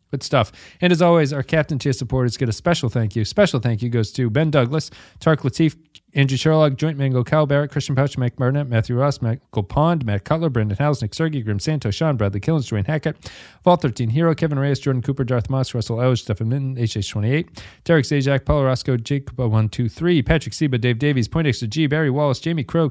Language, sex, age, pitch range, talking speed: English, male, 30-49, 115-155 Hz, 215 wpm